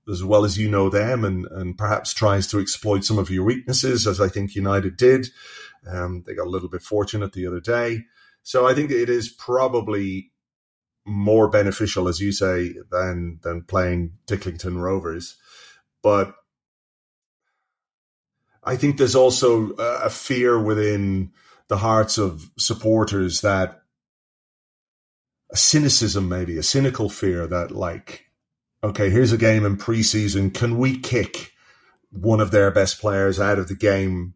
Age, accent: 30-49, British